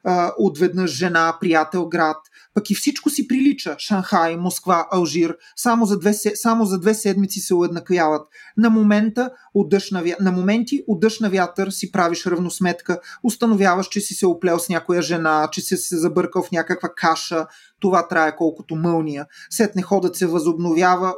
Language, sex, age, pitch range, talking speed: Bulgarian, male, 30-49, 170-220 Hz, 160 wpm